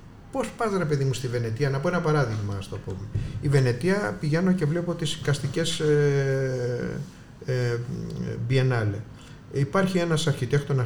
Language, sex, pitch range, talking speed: Greek, male, 115-165 Hz, 135 wpm